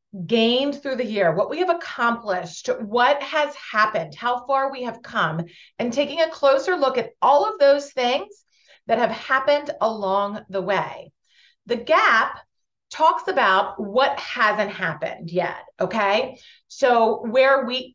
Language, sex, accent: English, female, American